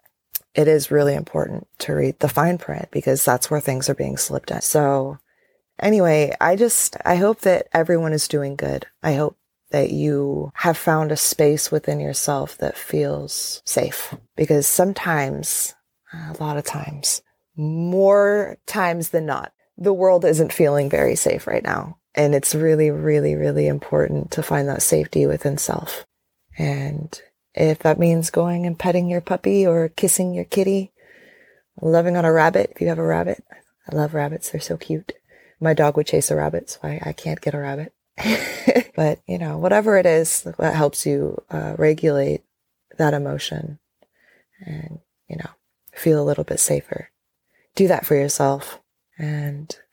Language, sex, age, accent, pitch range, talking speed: English, female, 20-39, American, 145-175 Hz, 165 wpm